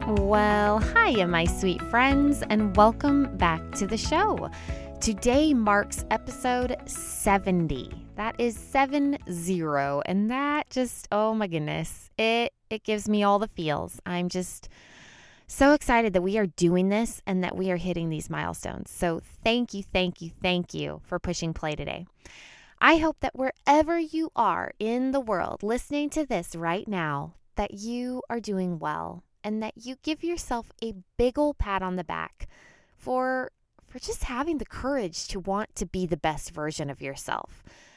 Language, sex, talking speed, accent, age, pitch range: English, female, 165 wpm, American, 20-39, 175-250 Hz